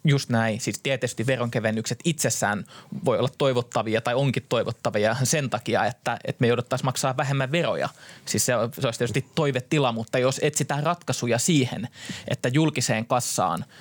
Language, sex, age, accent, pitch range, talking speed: Finnish, male, 20-39, native, 115-135 Hz, 155 wpm